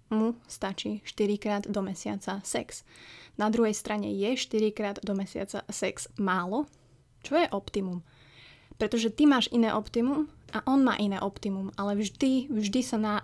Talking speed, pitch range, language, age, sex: 160 wpm, 195-225 Hz, Slovak, 20-39, female